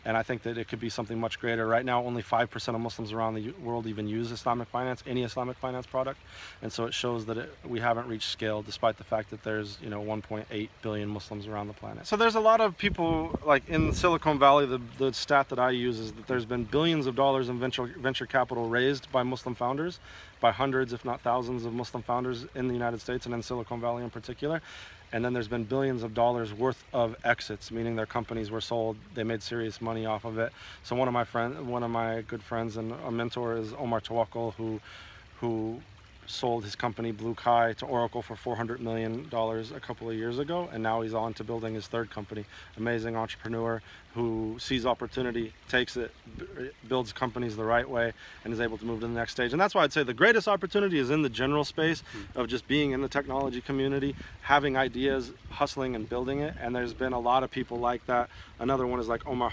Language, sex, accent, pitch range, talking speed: English, male, American, 115-125 Hz, 225 wpm